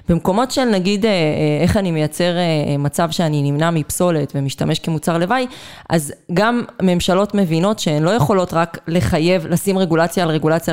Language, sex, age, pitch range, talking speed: Hebrew, female, 20-39, 155-190 Hz, 145 wpm